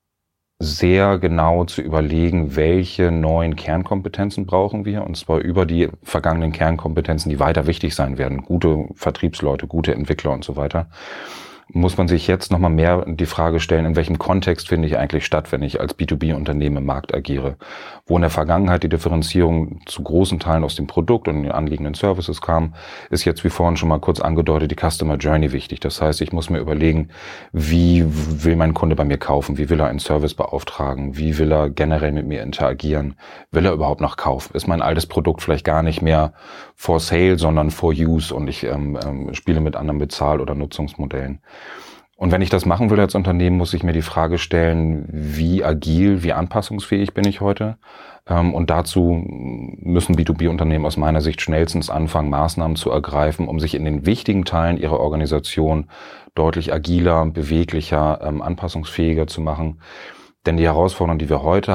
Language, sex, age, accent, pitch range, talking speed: German, male, 30-49, German, 75-85 Hz, 185 wpm